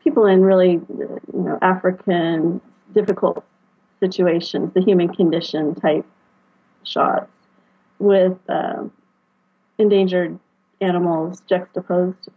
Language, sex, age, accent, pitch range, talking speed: English, female, 30-49, American, 175-210 Hz, 85 wpm